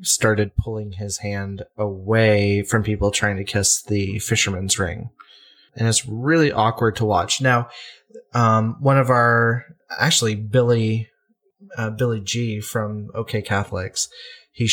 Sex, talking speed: male, 140 wpm